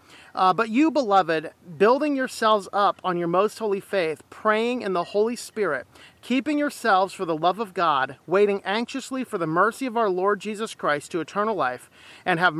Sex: male